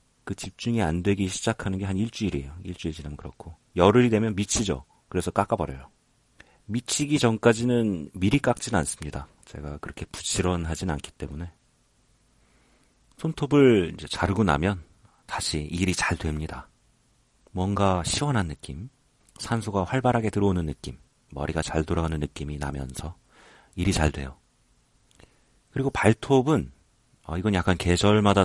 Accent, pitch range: native, 75-115 Hz